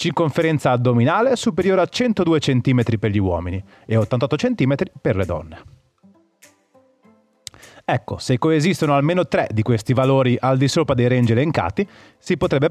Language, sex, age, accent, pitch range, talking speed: Italian, male, 30-49, native, 115-165 Hz, 145 wpm